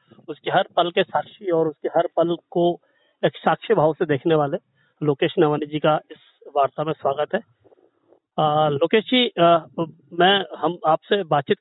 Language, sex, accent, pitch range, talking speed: Hindi, male, native, 155-195 Hz, 165 wpm